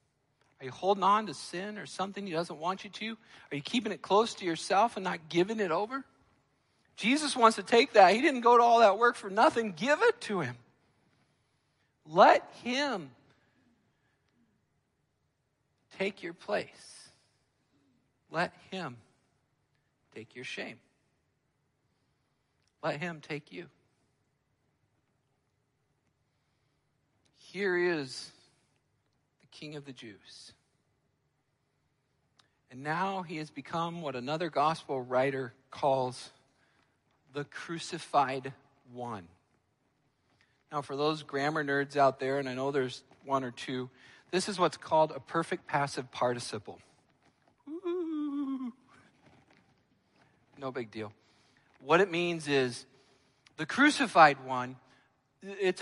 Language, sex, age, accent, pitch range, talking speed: English, male, 50-69, American, 135-190 Hz, 115 wpm